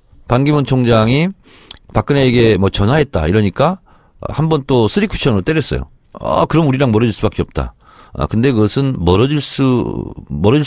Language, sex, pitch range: Korean, male, 95-145 Hz